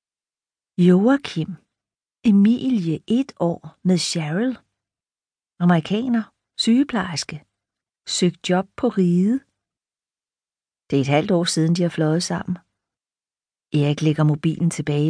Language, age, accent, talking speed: Danish, 40-59, native, 105 wpm